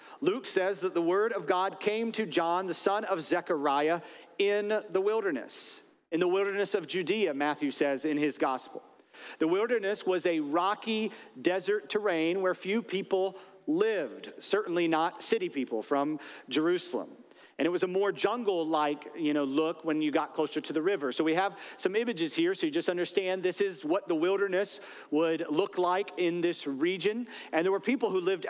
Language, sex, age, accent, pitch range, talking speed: English, male, 40-59, American, 160-220 Hz, 185 wpm